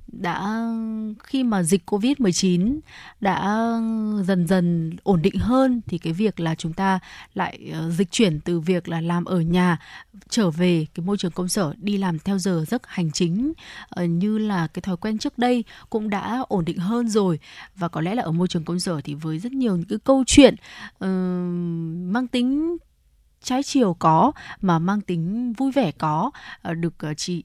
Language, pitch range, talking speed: Vietnamese, 170-220 Hz, 185 wpm